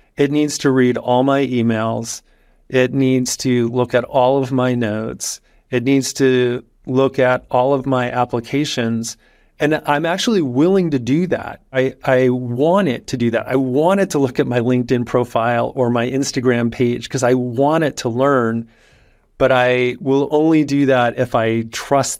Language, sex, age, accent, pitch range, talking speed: English, male, 30-49, American, 120-140 Hz, 180 wpm